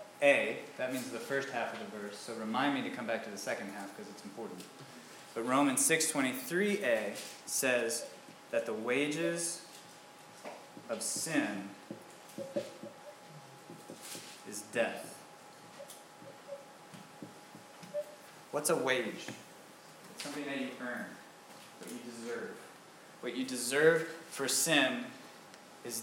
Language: English